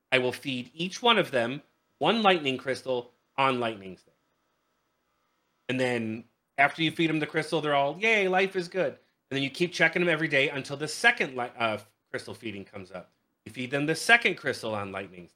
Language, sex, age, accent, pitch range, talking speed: English, male, 30-49, American, 120-160 Hz, 200 wpm